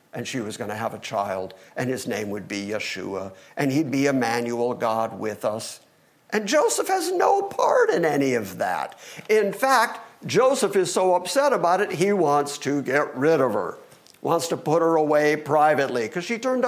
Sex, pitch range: male, 135-210 Hz